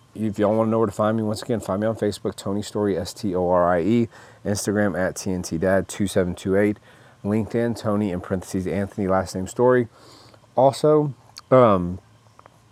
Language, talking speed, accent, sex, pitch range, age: English, 150 wpm, American, male, 95-115 Hz, 30-49